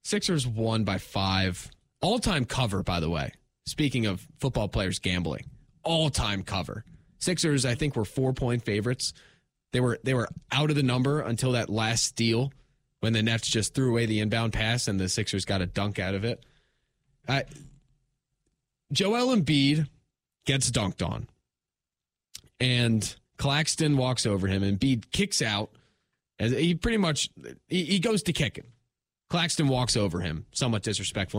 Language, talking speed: English, 165 wpm